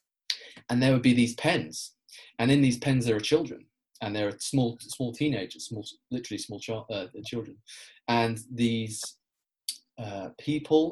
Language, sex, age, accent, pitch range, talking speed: English, male, 30-49, British, 105-140 Hz, 155 wpm